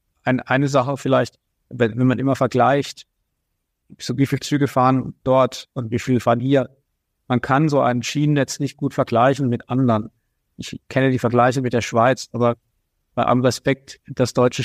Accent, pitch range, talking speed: German, 120-135 Hz, 175 wpm